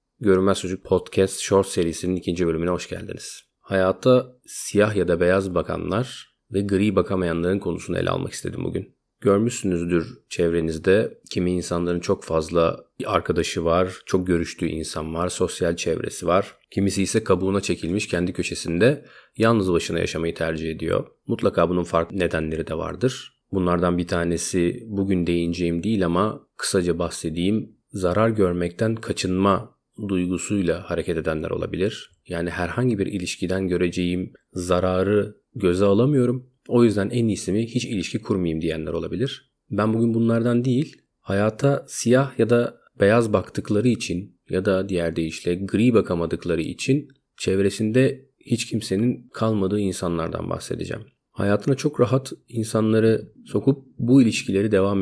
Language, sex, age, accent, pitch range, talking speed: Turkish, male, 40-59, native, 90-110 Hz, 130 wpm